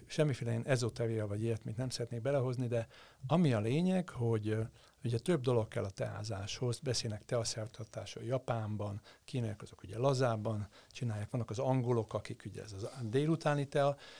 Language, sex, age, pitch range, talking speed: Hungarian, male, 60-79, 105-130 Hz, 150 wpm